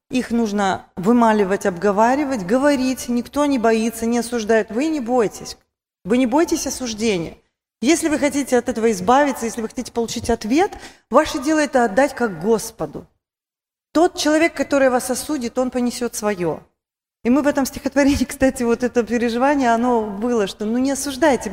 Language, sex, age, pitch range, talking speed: Russian, female, 30-49, 210-265 Hz, 160 wpm